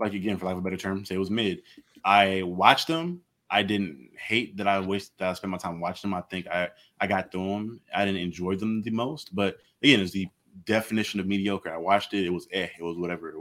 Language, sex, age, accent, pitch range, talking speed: English, male, 20-39, American, 95-110 Hz, 260 wpm